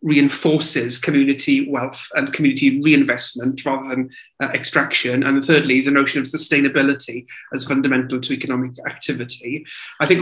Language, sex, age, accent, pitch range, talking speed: English, male, 30-49, British, 130-150 Hz, 135 wpm